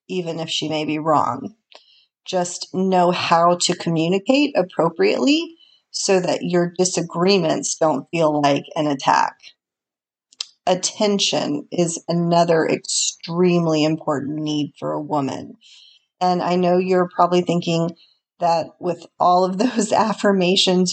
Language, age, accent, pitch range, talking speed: English, 30-49, American, 165-190 Hz, 120 wpm